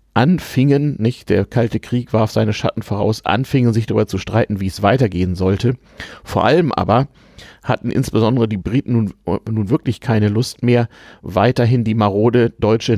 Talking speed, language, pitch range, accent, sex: 160 wpm, German, 105-125 Hz, German, male